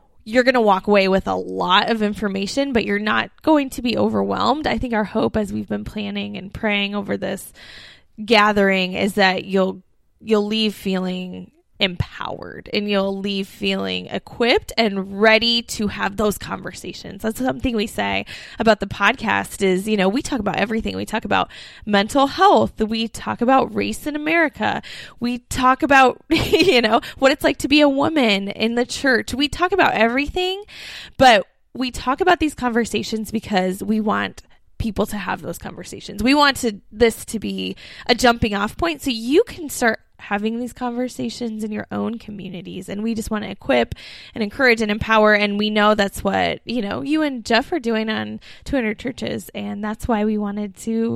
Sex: female